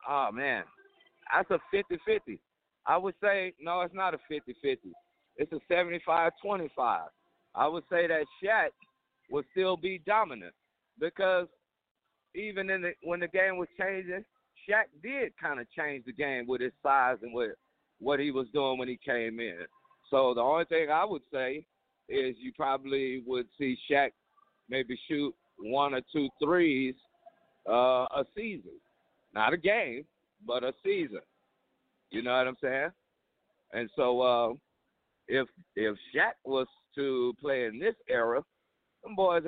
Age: 50-69